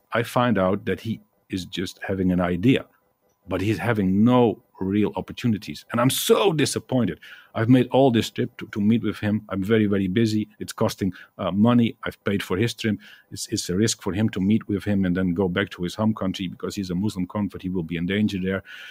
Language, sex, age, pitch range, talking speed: English, male, 50-69, 95-125 Hz, 230 wpm